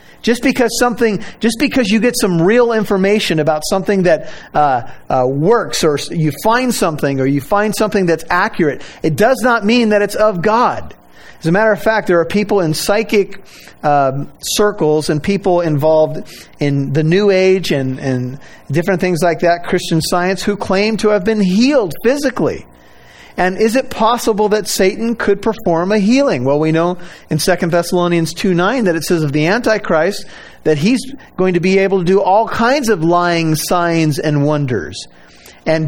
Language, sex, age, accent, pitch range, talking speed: English, male, 40-59, American, 160-215 Hz, 180 wpm